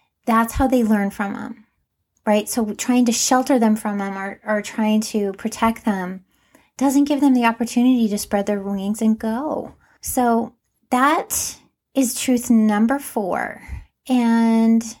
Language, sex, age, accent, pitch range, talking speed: English, female, 30-49, American, 205-245 Hz, 150 wpm